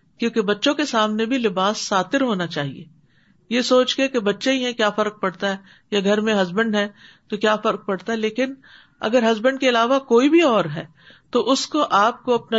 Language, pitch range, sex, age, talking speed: Urdu, 195-270 Hz, female, 50-69, 215 wpm